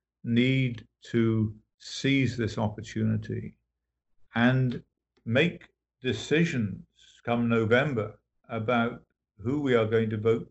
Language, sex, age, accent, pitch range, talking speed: English, male, 50-69, British, 105-125 Hz, 95 wpm